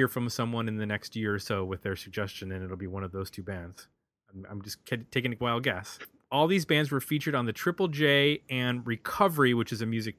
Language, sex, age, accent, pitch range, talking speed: English, male, 30-49, American, 110-145 Hz, 235 wpm